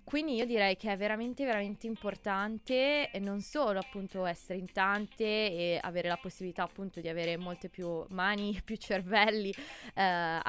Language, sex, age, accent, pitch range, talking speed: Italian, female, 20-39, native, 185-215 Hz, 155 wpm